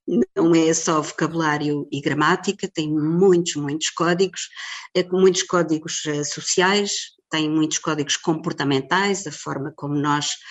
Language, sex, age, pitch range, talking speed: Portuguese, female, 50-69, 165-215 Hz, 130 wpm